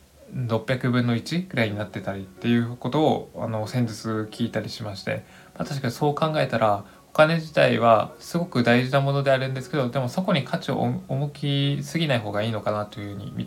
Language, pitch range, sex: Japanese, 115-145 Hz, male